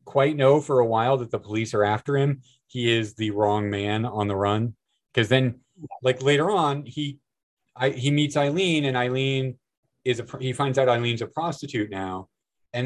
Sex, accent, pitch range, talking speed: male, American, 105-135 Hz, 190 wpm